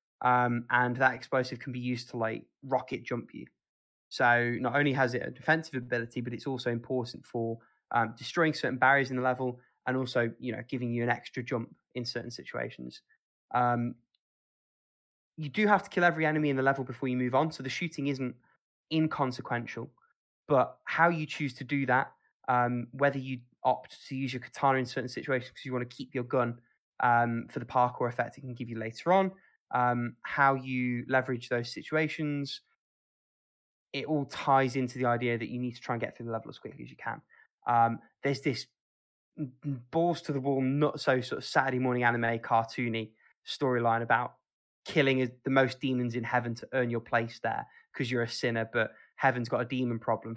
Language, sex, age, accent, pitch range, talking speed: English, male, 20-39, British, 120-135 Hz, 195 wpm